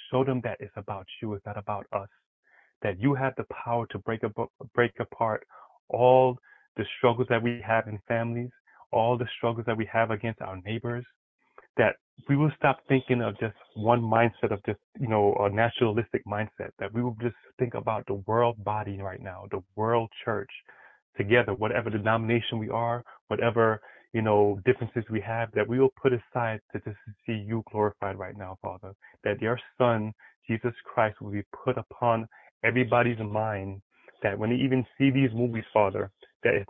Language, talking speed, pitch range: English, 180 wpm, 105-120 Hz